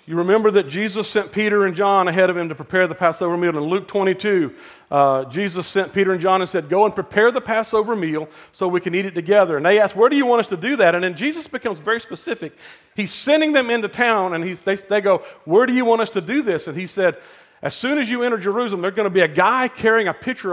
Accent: American